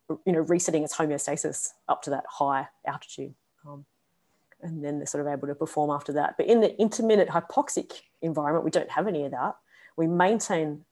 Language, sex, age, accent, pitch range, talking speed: English, female, 30-49, Australian, 150-175 Hz, 190 wpm